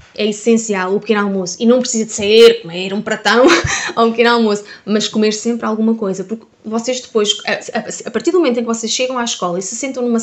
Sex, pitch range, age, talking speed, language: female, 205-245 Hz, 20-39, 230 wpm, Portuguese